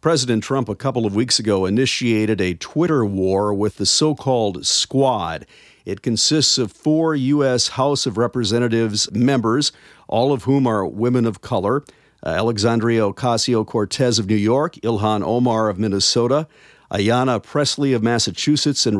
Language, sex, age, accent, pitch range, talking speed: English, male, 50-69, American, 110-135 Hz, 140 wpm